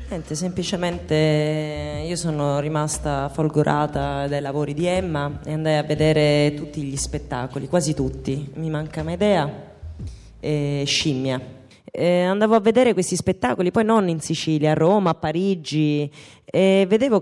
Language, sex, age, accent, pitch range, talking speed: Italian, female, 30-49, native, 145-185 Hz, 145 wpm